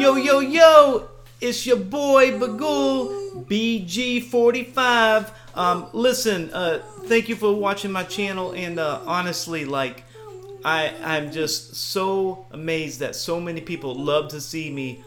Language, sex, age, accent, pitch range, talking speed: English, male, 30-49, American, 135-220 Hz, 130 wpm